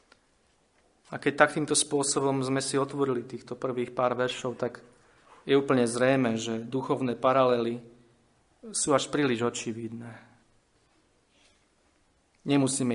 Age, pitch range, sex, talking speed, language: 40-59, 120-135 Hz, male, 110 wpm, Slovak